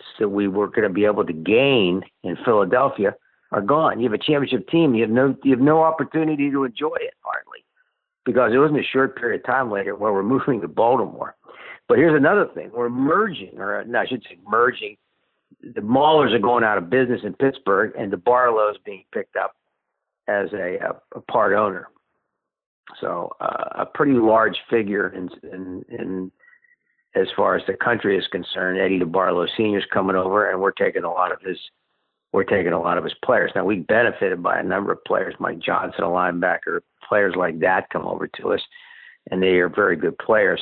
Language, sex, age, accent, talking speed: English, male, 60-79, American, 200 wpm